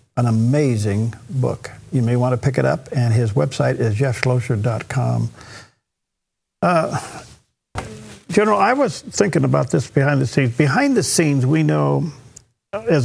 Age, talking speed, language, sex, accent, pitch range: 50-69, 140 wpm, English, male, American, 120-150 Hz